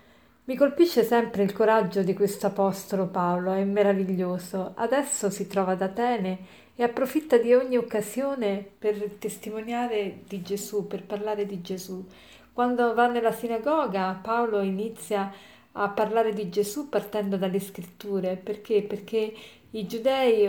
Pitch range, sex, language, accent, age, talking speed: 195-230 Hz, female, Italian, native, 50-69, 135 wpm